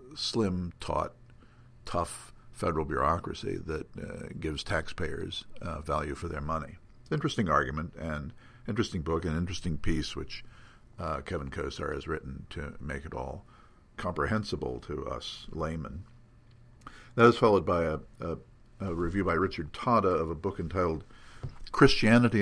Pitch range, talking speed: 80-105 Hz, 135 wpm